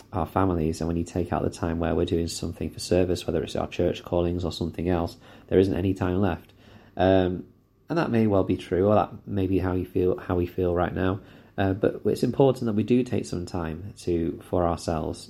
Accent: British